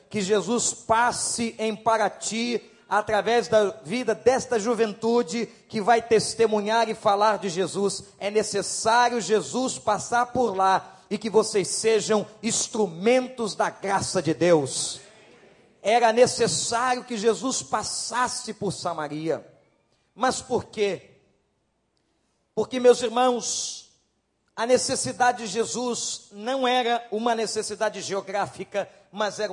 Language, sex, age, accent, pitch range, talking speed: Portuguese, male, 40-59, Brazilian, 200-240 Hz, 115 wpm